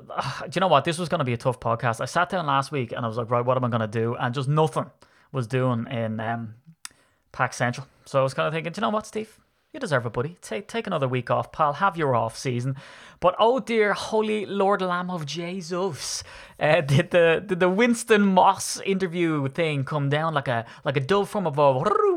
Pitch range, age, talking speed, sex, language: 125-170 Hz, 20-39, 240 wpm, male, English